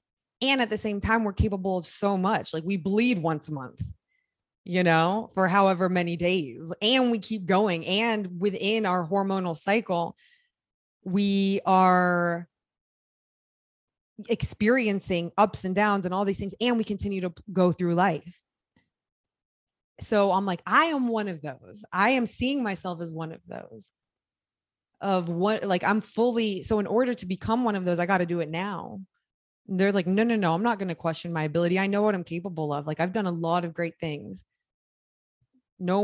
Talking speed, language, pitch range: 185 wpm, English, 165-200 Hz